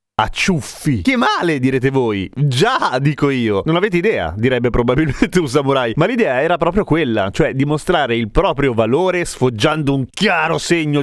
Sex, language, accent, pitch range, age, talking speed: male, Italian, native, 115-160 Hz, 30-49, 165 wpm